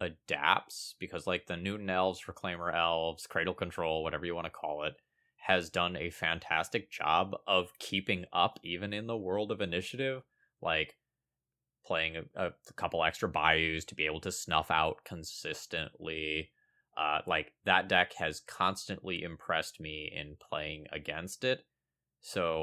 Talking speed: 150 wpm